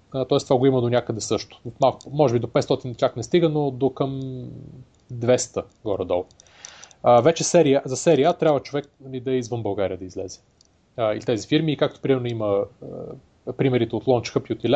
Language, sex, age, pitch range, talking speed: Bulgarian, male, 20-39, 120-150 Hz, 200 wpm